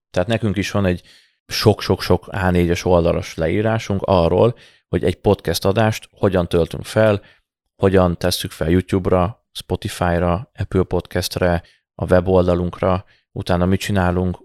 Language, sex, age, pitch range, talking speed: Hungarian, male, 30-49, 90-100 Hz, 115 wpm